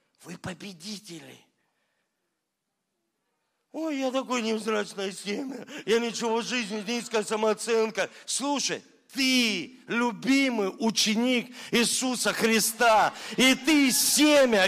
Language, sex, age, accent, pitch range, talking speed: Russian, male, 50-69, native, 180-270 Hz, 90 wpm